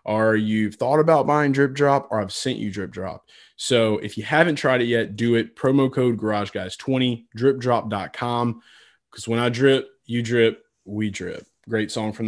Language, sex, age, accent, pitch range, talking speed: English, male, 20-39, American, 110-130 Hz, 190 wpm